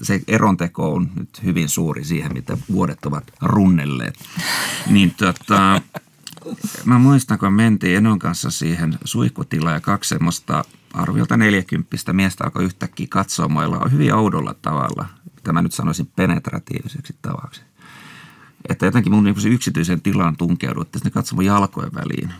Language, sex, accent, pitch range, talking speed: Finnish, male, native, 85-115 Hz, 130 wpm